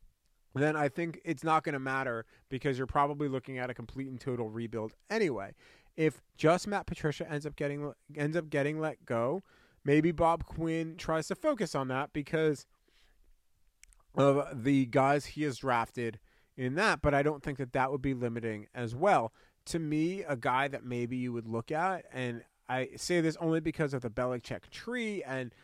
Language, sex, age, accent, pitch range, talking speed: English, male, 30-49, American, 120-145 Hz, 185 wpm